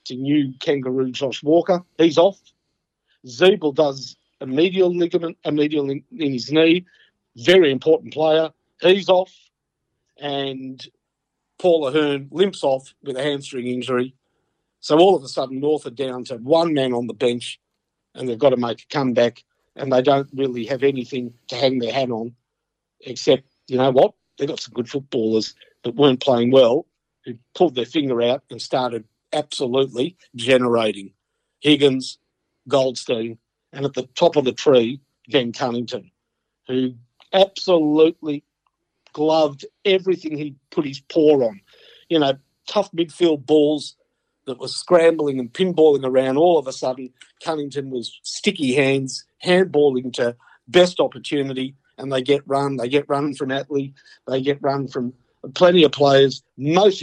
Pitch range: 130-155 Hz